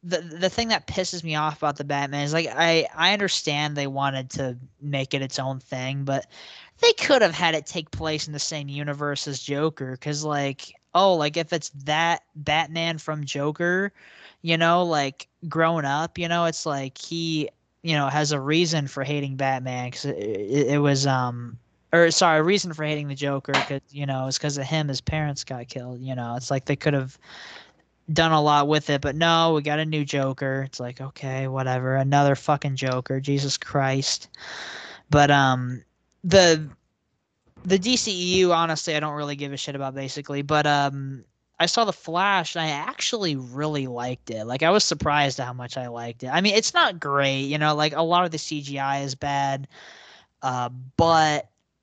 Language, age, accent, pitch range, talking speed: English, 10-29, American, 135-165 Hz, 200 wpm